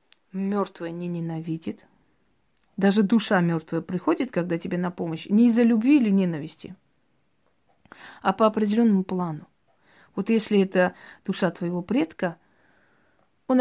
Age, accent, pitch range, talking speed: 30-49, native, 175-220 Hz, 120 wpm